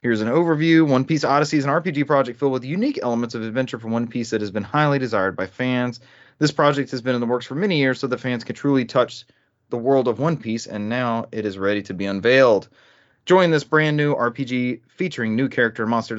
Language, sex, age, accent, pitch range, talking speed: English, male, 30-49, American, 115-135 Hz, 235 wpm